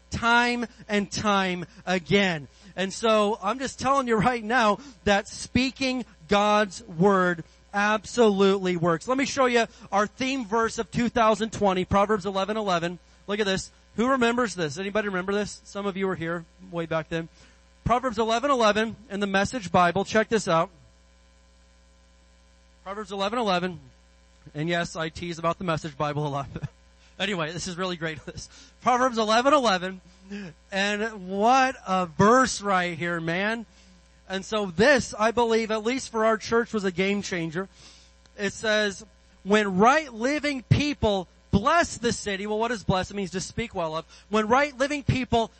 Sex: male